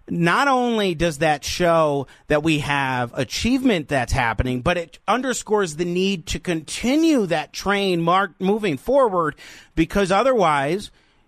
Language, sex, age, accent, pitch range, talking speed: English, male, 40-59, American, 160-215 Hz, 130 wpm